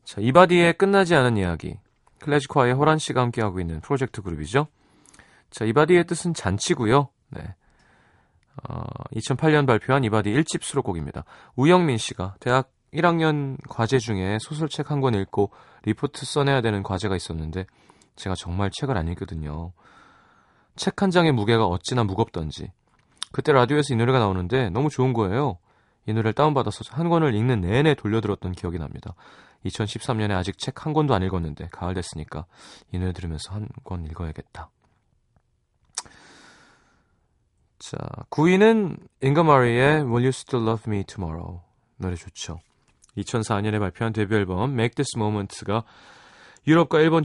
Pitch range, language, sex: 95-140 Hz, Korean, male